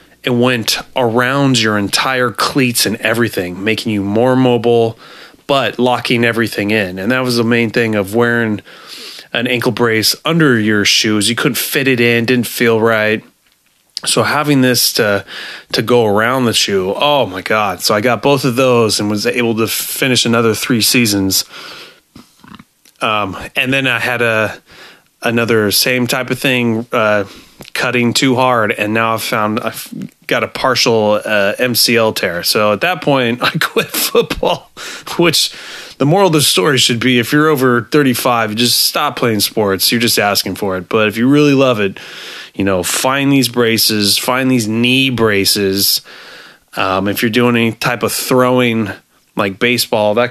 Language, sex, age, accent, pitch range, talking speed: English, male, 30-49, American, 105-125 Hz, 170 wpm